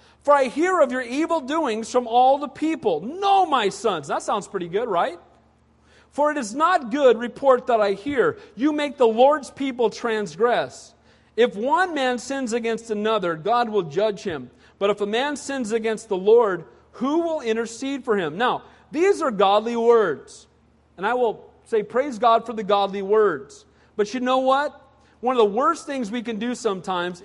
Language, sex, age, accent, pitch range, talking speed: English, male, 40-59, American, 225-310 Hz, 185 wpm